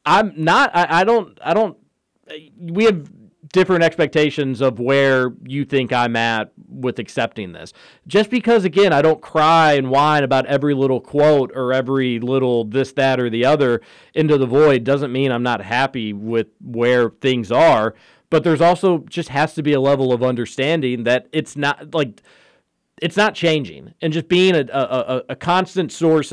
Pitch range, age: 130-170 Hz, 40-59